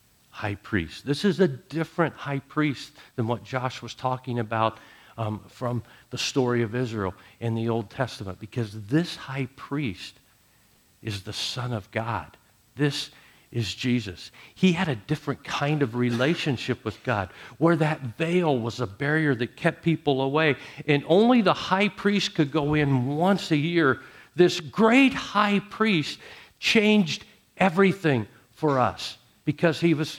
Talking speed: 155 wpm